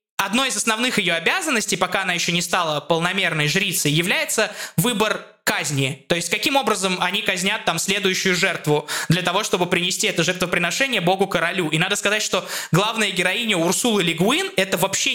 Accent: native